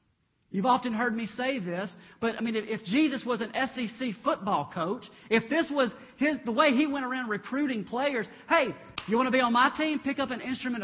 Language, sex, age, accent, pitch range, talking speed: English, male, 40-59, American, 165-245 Hz, 215 wpm